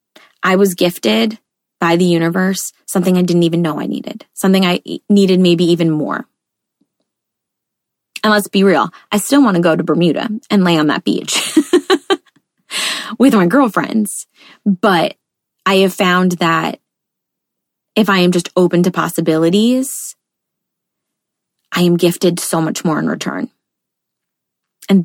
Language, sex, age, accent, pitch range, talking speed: English, female, 20-39, American, 175-210 Hz, 140 wpm